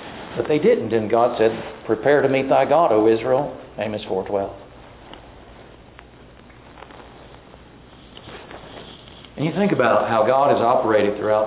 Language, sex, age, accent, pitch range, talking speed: English, male, 50-69, American, 110-145 Hz, 125 wpm